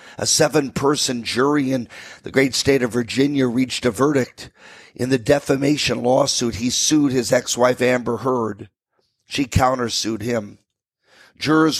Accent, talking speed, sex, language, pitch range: American, 130 wpm, male, English, 120-145 Hz